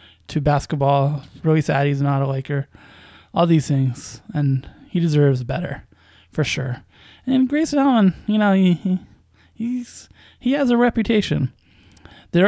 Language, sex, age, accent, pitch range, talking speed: English, male, 20-39, American, 135-180 Hz, 145 wpm